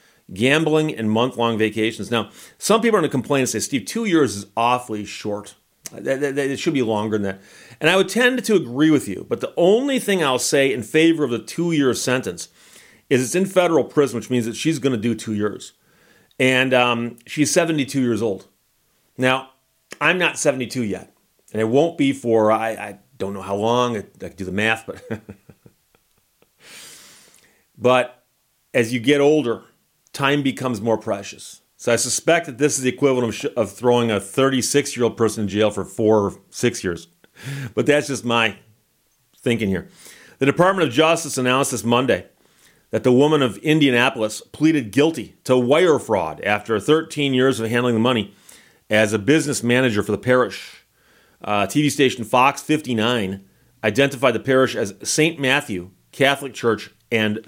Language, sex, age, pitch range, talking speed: English, male, 40-59, 110-145 Hz, 180 wpm